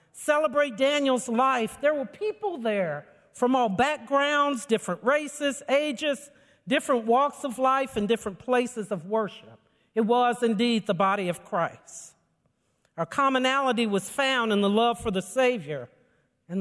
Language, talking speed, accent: English, 145 wpm, American